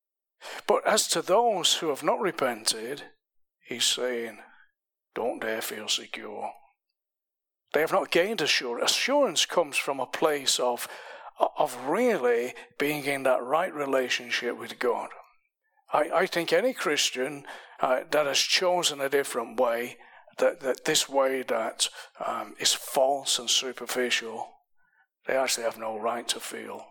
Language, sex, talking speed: English, male, 140 wpm